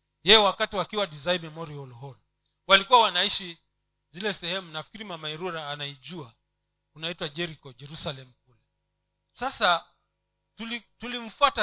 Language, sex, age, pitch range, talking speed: Swahili, male, 40-59, 150-215 Hz, 100 wpm